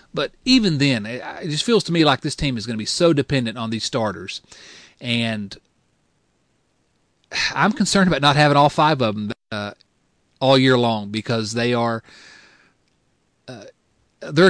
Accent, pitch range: American, 115-150 Hz